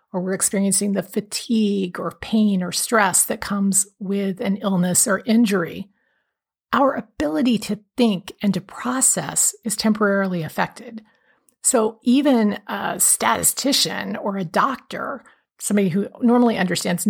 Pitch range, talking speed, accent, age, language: 190-235 Hz, 130 wpm, American, 50-69, English